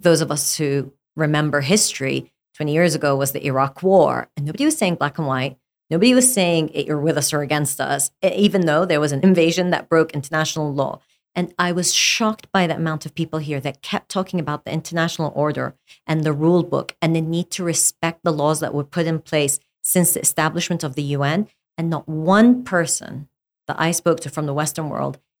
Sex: female